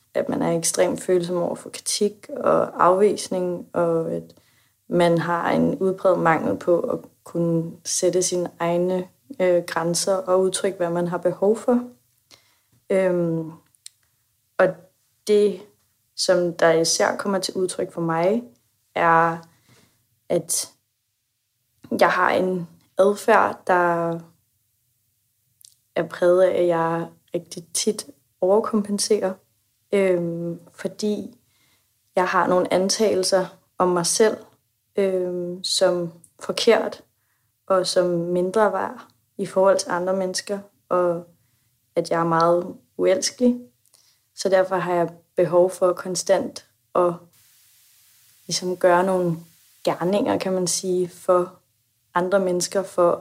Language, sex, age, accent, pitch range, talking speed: Danish, female, 20-39, native, 160-185 Hz, 115 wpm